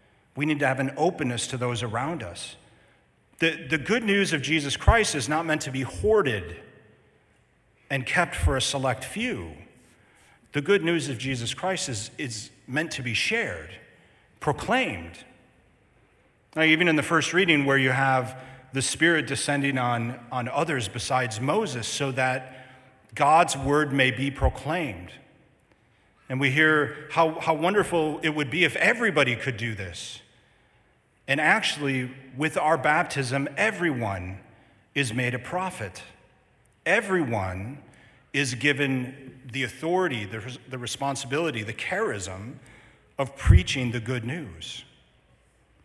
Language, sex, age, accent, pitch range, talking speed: English, male, 40-59, American, 120-155 Hz, 135 wpm